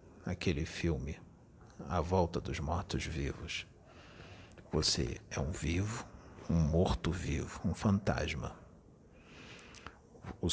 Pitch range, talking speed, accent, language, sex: 80-95 Hz, 90 wpm, Brazilian, English, male